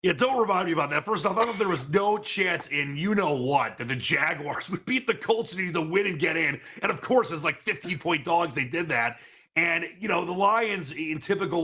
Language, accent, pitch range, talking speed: English, American, 140-170 Hz, 240 wpm